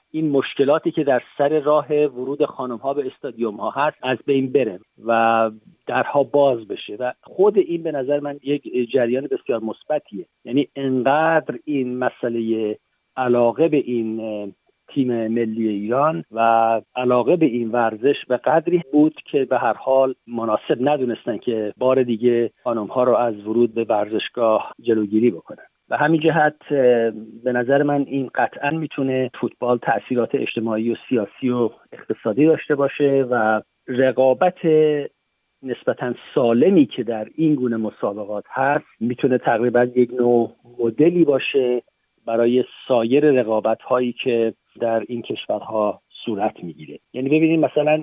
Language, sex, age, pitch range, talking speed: Persian, male, 50-69, 115-145 Hz, 140 wpm